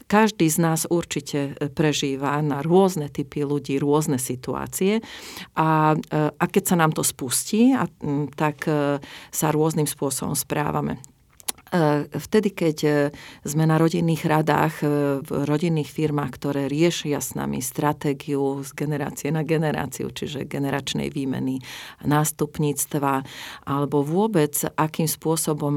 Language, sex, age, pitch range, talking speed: Slovak, female, 40-59, 140-160 Hz, 115 wpm